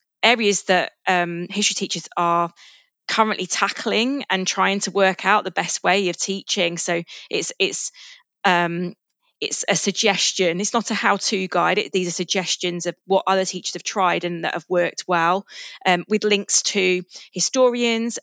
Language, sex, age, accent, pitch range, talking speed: English, female, 20-39, British, 180-205 Hz, 160 wpm